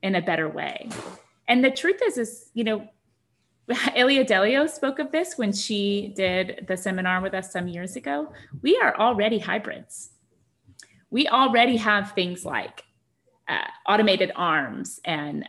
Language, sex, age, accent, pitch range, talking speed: English, female, 30-49, American, 175-230 Hz, 150 wpm